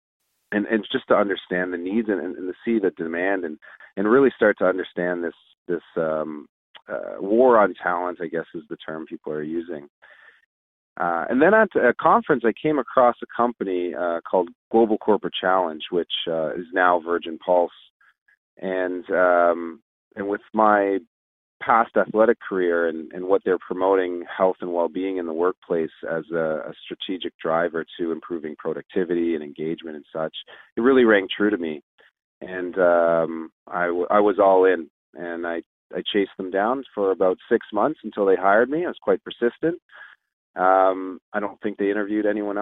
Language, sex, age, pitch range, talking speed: English, male, 30-49, 85-105 Hz, 175 wpm